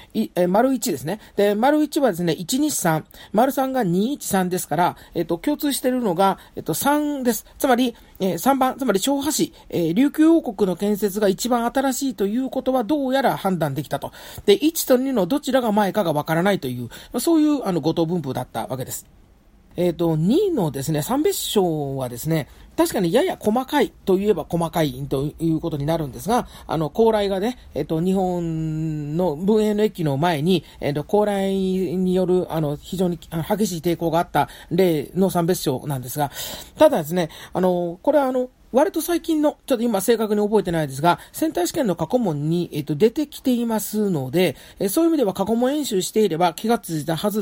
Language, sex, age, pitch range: Japanese, male, 40-59, 165-245 Hz